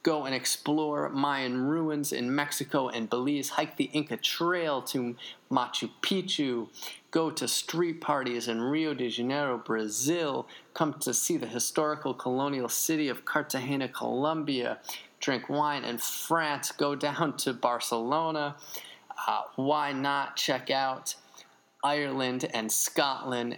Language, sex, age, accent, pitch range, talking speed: English, male, 20-39, American, 120-150 Hz, 130 wpm